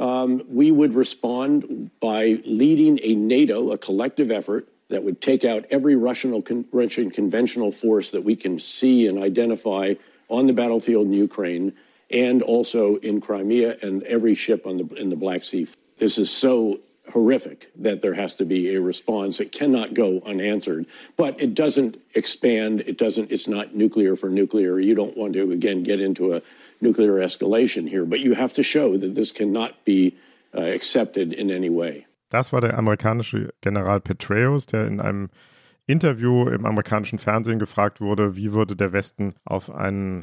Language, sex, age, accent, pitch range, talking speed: German, male, 50-69, American, 100-120 Hz, 145 wpm